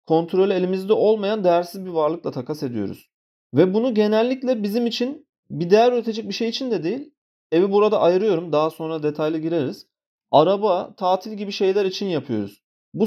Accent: native